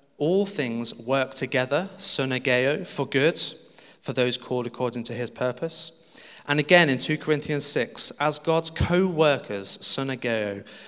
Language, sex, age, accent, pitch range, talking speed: English, male, 30-49, British, 115-150 Hz, 130 wpm